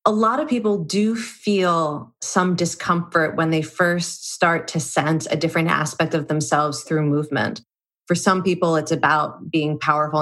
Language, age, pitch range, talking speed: English, 30-49, 155-200 Hz, 165 wpm